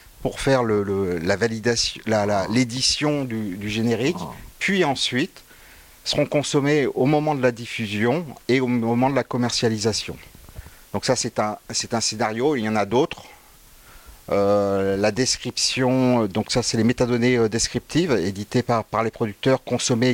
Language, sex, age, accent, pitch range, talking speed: French, male, 50-69, French, 110-130 Hz, 140 wpm